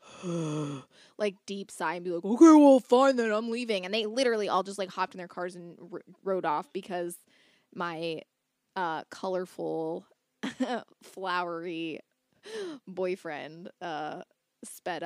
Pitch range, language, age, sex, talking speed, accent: 180-235 Hz, English, 20-39, female, 130 wpm, American